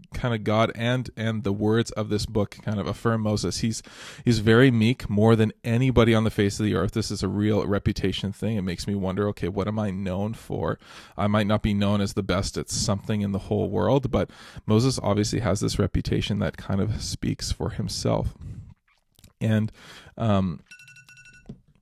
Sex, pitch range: male, 100-110 Hz